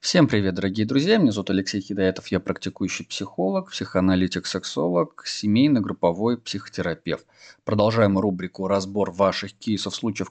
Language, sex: Russian, male